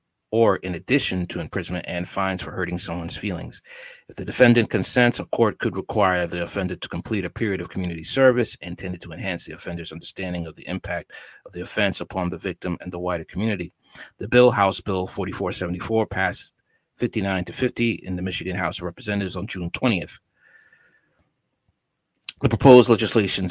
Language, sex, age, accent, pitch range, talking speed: English, male, 40-59, American, 90-110 Hz, 175 wpm